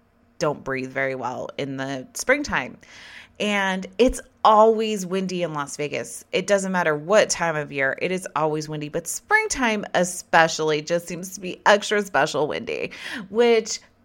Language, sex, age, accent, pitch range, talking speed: English, female, 30-49, American, 165-240 Hz, 155 wpm